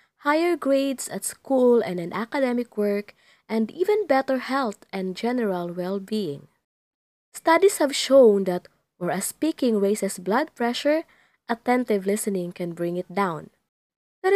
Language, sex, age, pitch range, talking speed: English, female, 20-39, 195-275 Hz, 130 wpm